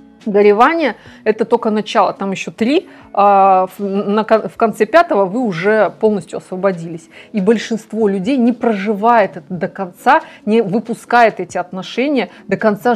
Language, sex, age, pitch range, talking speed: Russian, female, 30-49, 195-235 Hz, 130 wpm